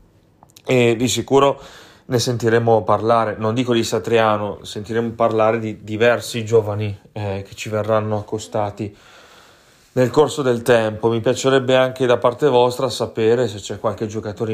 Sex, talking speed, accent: male, 145 wpm, native